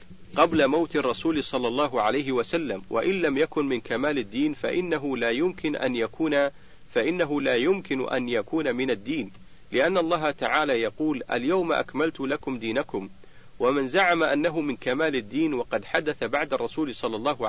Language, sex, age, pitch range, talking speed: Arabic, male, 50-69, 125-170 Hz, 155 wpm